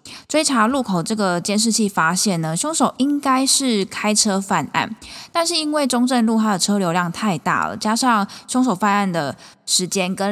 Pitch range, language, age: 180-235 Hz, Chinese, 20-39